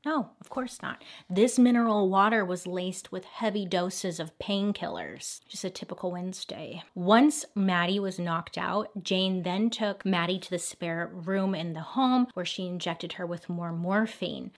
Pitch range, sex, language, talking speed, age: 175-210 Hz, female, English, 170 wpm, 30-49